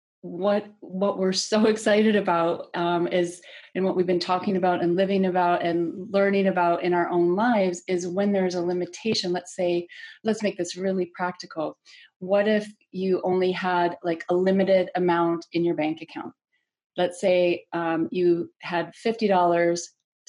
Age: 30-49